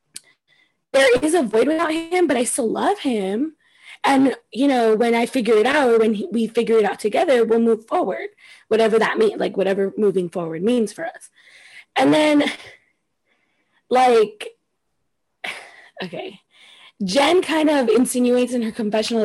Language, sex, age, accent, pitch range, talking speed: English, female, 20-39, American, 205-275 Hz, 155 wpm